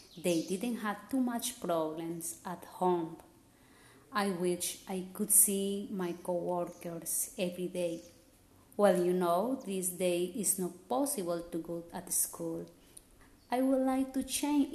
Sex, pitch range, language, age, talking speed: female, 175-220 Hz, English, 30-49, 140 wpm